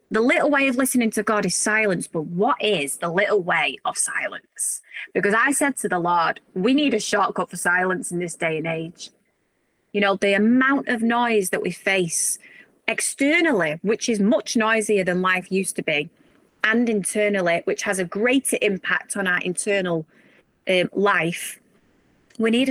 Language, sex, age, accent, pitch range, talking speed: English, female, 20-39, British, 195-255 Hz, 175 wpm